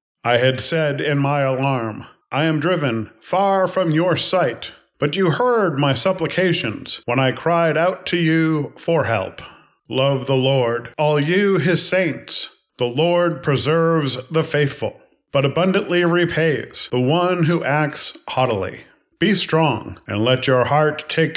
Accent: American